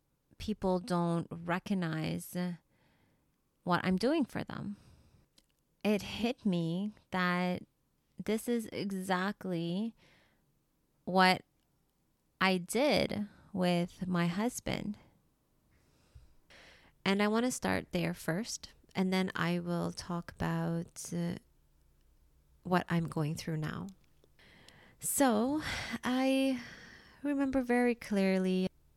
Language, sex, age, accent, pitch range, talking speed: English, female, 30-49, American, 170-220 Hz, 95 wpm